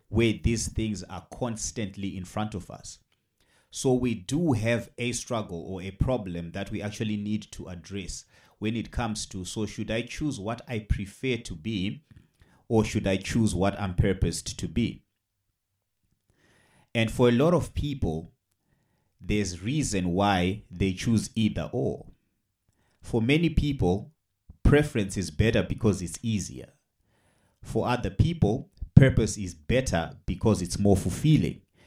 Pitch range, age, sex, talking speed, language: 95-115 Hz, 30-49, male, 145 wpm, English